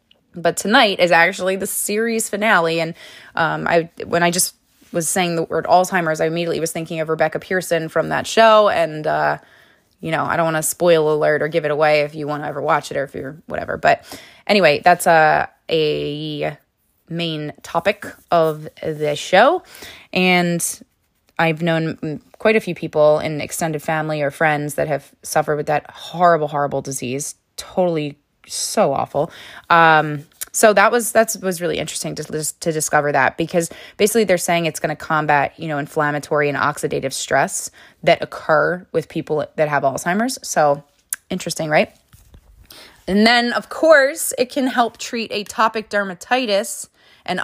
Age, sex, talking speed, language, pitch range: 20-39, female, 170 wpm, English, 155-205 Hz